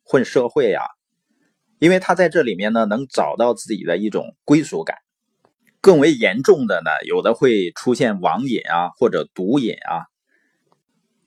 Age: 30-49